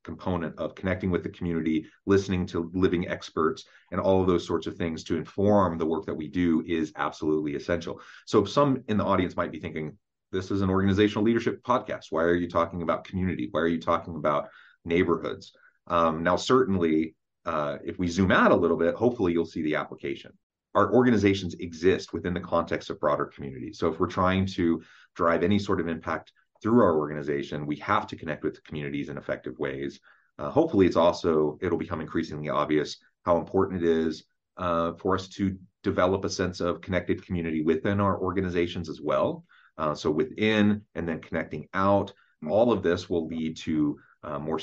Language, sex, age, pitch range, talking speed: English, male, 30-49, 80-95 Hz, 190 wpm